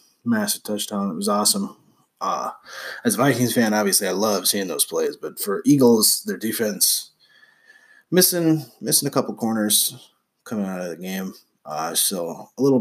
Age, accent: 20-39, American